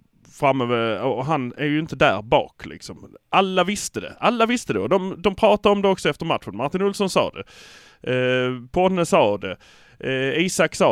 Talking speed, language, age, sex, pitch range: 190 wpm, Swedish, 30-49, male, 125-175 Hz